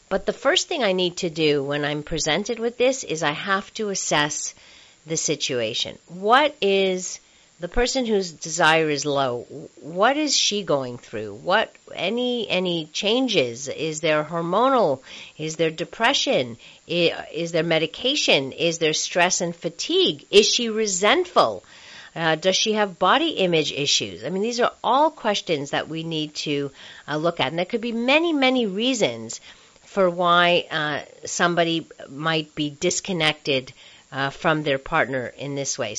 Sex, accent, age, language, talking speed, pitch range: female, American, 50-69, English, 160 wpm, 155-220 Hz